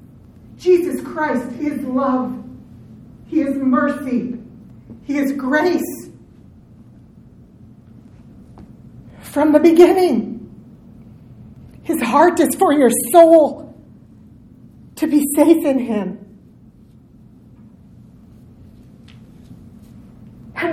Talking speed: 70 wpm